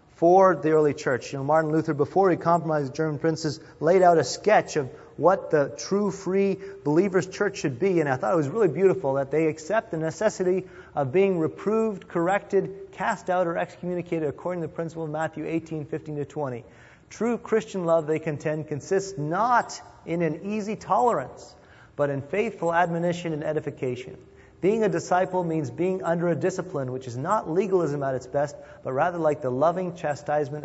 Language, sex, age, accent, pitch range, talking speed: English, male, 30-49, American, 145-180 Hz, 185 wpm